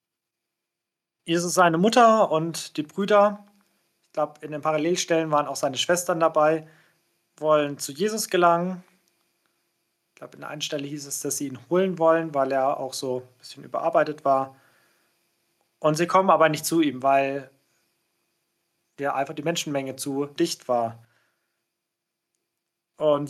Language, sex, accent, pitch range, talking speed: German, male, German, 145-180 Hz, 150 wpm